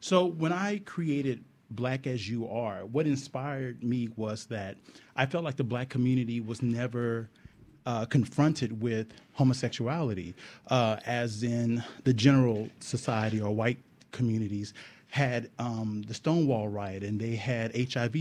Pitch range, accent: 115-135 Hz, American